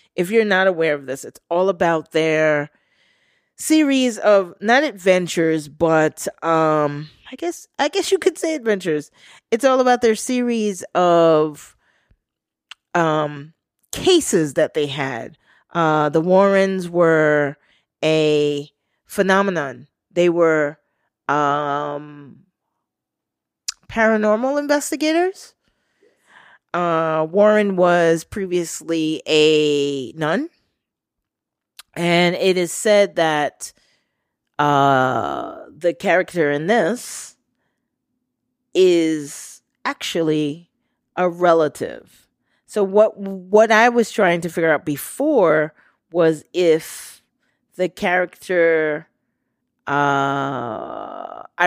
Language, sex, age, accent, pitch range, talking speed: English, female, 30-49, American, 155-215 Hz, 95 wpm